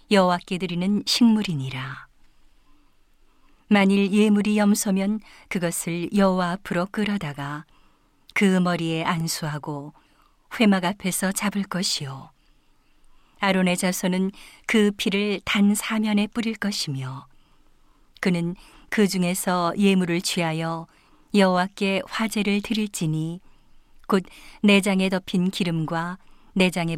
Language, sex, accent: Korean, female, native